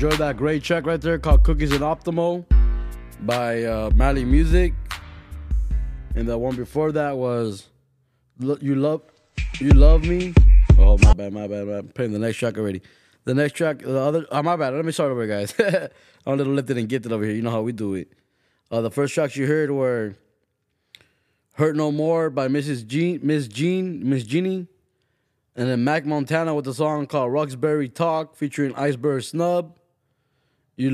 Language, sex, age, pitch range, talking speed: English, male, 20-39, 120-150 Hz, 185 wpm